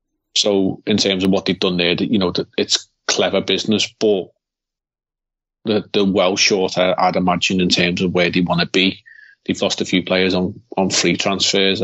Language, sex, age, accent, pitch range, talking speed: English, male, 30-49, British, 95-105 Hz, 180 wpm